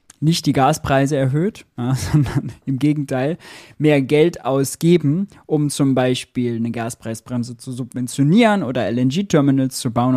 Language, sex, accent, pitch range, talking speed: German, male, German, 120-150 Hz, 125 wpm